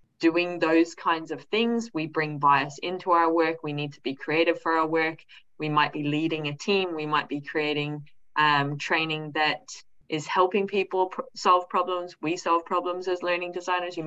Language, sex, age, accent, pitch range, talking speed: English, female, 20-39, Australian, 155-190 Hz, 190 wpm